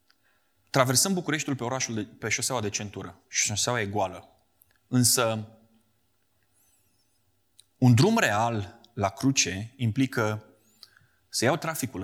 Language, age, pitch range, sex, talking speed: Romanian, 30-49, 100-125 Hz, male, 105 wpm